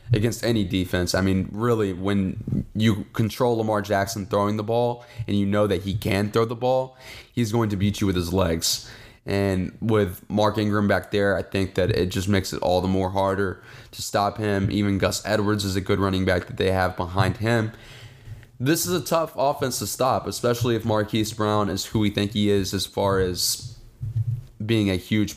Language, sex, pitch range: English, male, 95-115 Hz